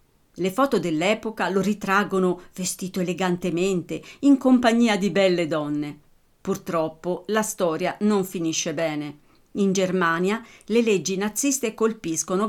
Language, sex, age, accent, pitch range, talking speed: Italian, female, 50-69, native, 170-225 Hz, 115 wpm